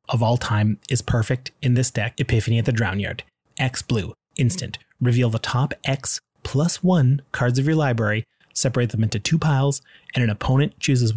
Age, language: 30-49, English